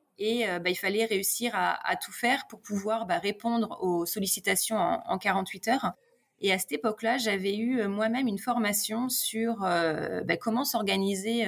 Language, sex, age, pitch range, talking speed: French, female, 20-39, 185-230 Hz, 180 wpm